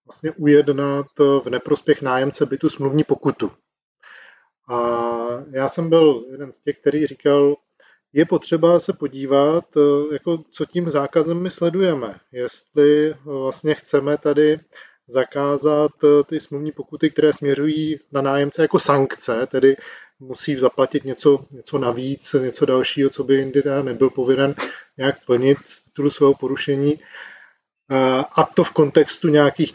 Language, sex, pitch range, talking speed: Czech, male, 130-150 Hz, 130 wpm